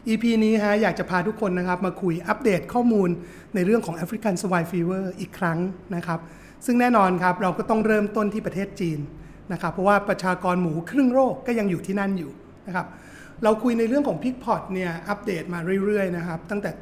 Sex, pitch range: male, 175-205 Hz